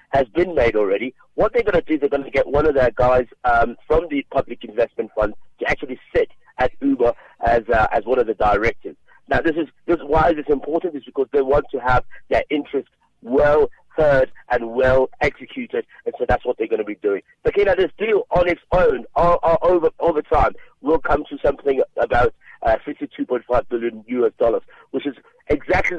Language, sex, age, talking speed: English, male, 50-69, 215 wpm